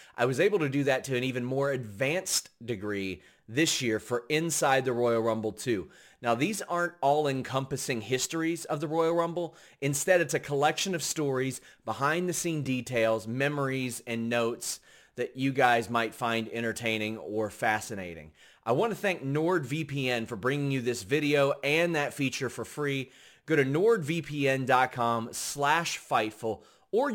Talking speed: 160 wpm